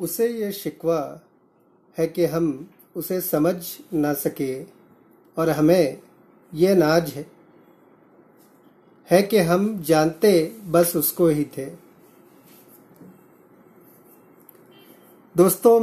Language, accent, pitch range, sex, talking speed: Hindi, native, 165-215 Hz, male, 90 wpm